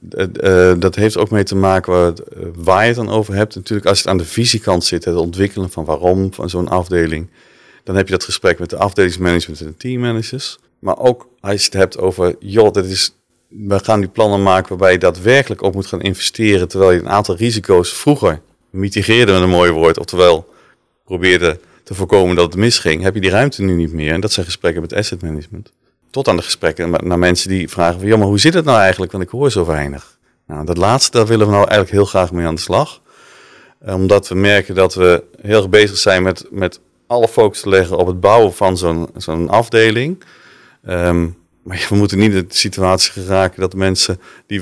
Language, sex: Dutch, male